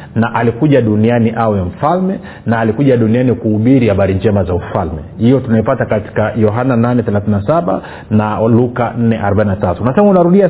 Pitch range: 105-135 Hz